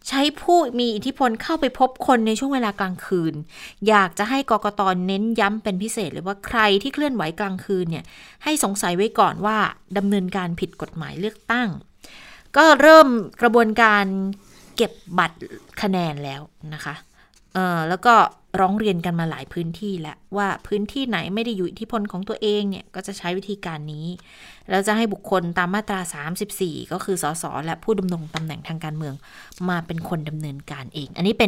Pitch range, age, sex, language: 175-230 Hz, 20-39, female, Thai